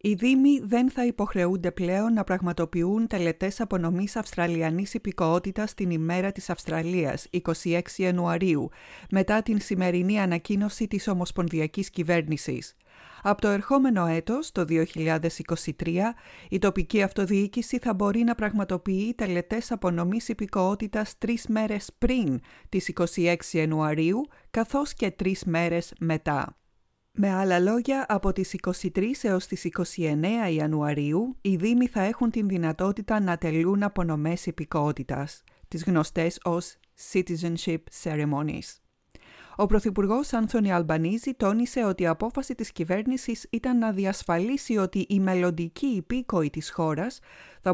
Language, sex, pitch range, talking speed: Greek, female, 170-215 Hz, 120 wpm